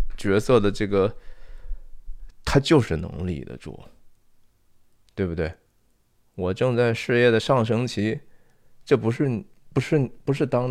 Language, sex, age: Chinese, male, 20-39